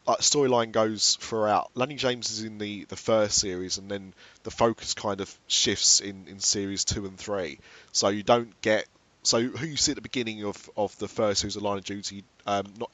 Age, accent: 30-49, British